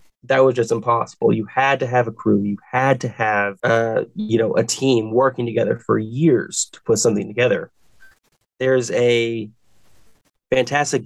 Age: 20-39